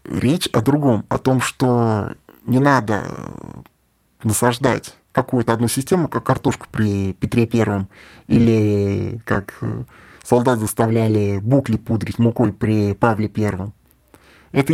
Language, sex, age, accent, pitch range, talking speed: Russian, male, 20-39, native, 110-130 Hz, 115 wpm